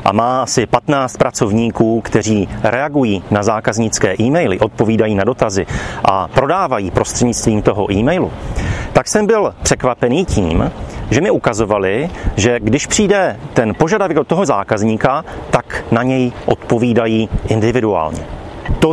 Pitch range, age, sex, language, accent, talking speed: 110-155 Hz, 40-59, male, Czech, native, 125 wpm